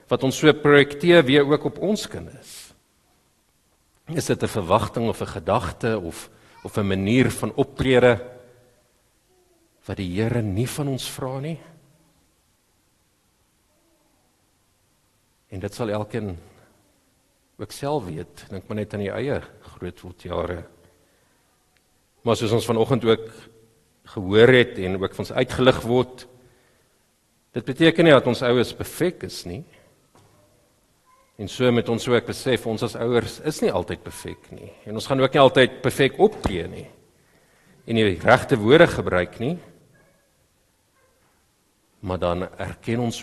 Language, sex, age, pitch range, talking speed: English, male, 50-69, 95-125 Hz, 135 wpm